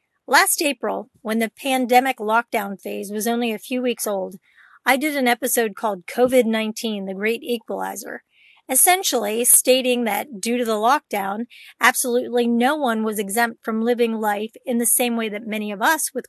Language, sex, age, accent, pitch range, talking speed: English, female, 40-59, American, 220-265 Hz, 170 wpm